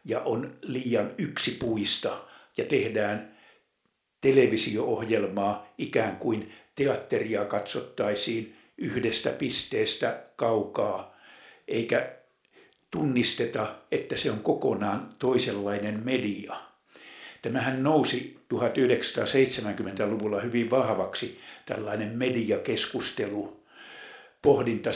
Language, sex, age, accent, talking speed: Finnish, male, 60-79, native, 70 wpm